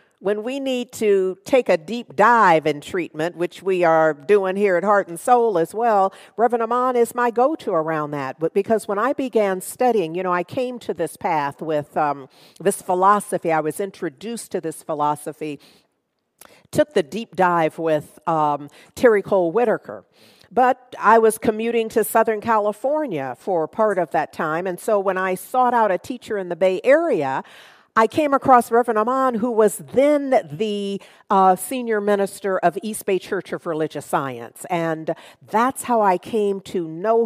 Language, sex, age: English, female, 50-69